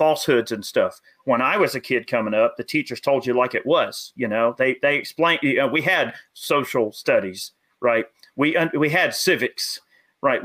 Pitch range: 135-175 Hz